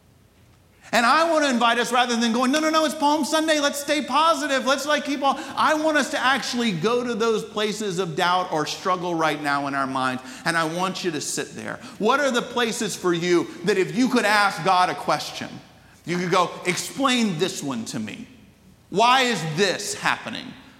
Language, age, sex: English, 40-59, male